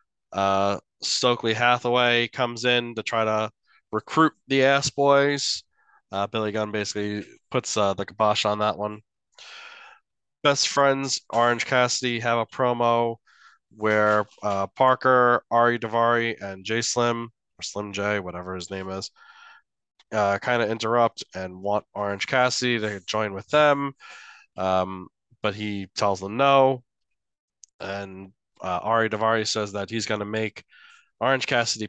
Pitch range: 105-125 Hz